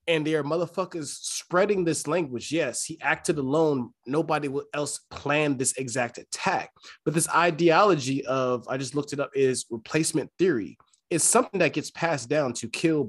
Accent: American